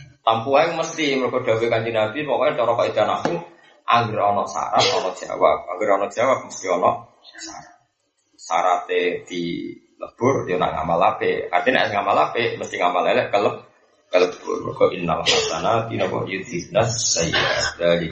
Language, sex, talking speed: Indonesian, male, 140 wpm